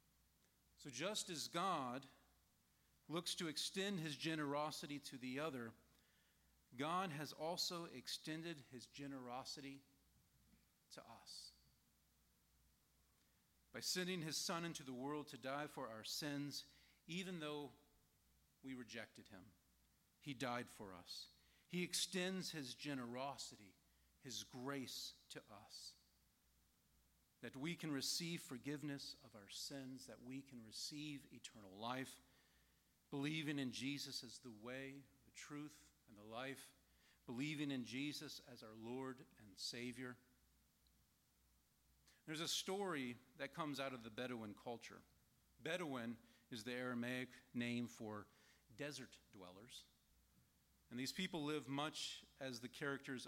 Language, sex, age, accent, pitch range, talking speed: English, male, 40-59, American, 110-145 Hz, 120 wpm